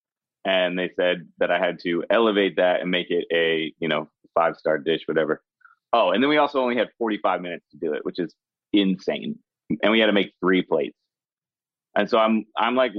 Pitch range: 90-110 Hz